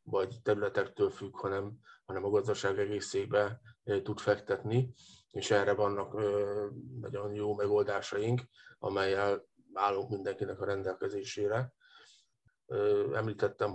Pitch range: 100-125 Hz